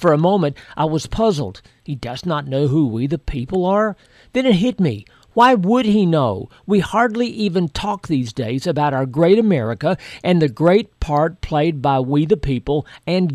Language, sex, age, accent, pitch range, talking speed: English, male, 50-69, American, 125-185 Hz, 195 wpm